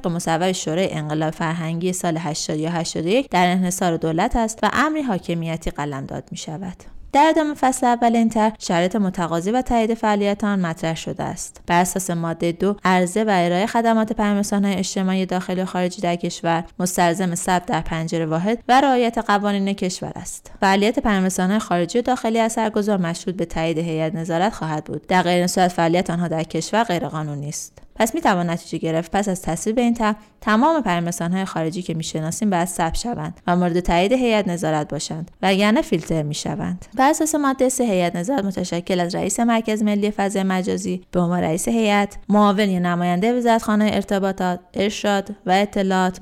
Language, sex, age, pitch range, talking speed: Persian, female, 20-39, 175-215 Hz, 165 wpm